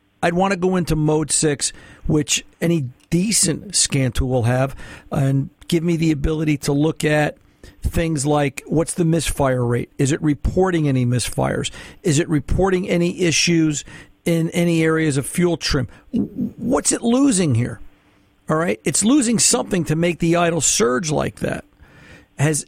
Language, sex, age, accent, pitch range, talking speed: English, male, 50-69, American, 145-175 Hz, 160 wpm